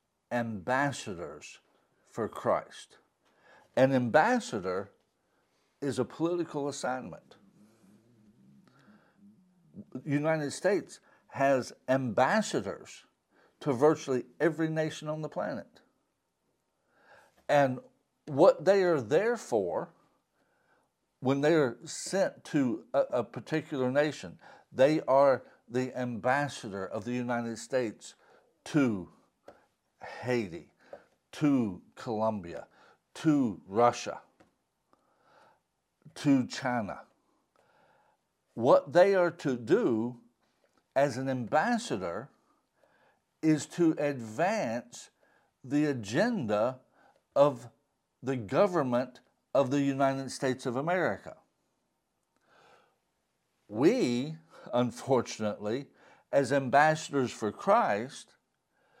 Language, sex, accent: English, male, American